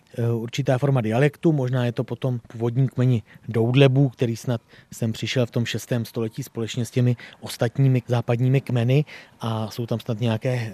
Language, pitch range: Czech, 115-140 Hz